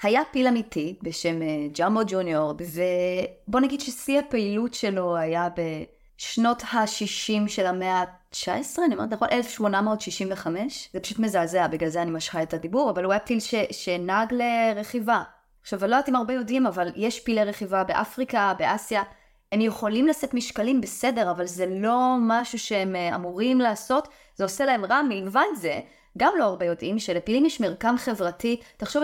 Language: Hebrew